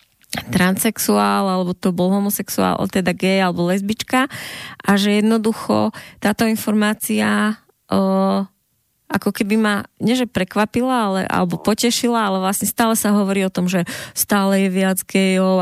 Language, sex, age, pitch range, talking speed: Slovak, female, 20-39, 185-210 Hz, 135 wpm